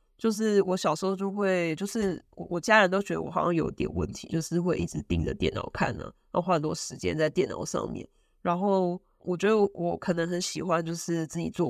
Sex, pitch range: female, 160-200 Hz